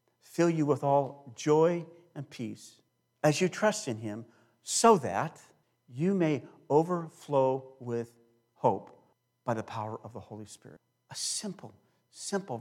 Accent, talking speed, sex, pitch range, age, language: American, 140 wpm, male, 120-160 Hz, 50-69, English